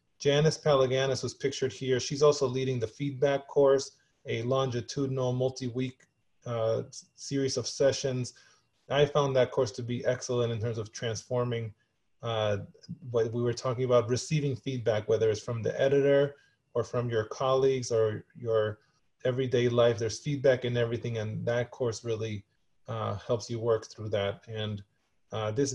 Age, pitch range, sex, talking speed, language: 20-39, 115-135 Hz, male, 155 wpm, English